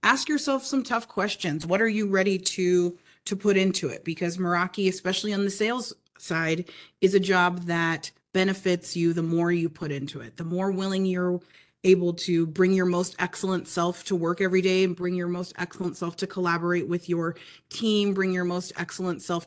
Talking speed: 195 wpm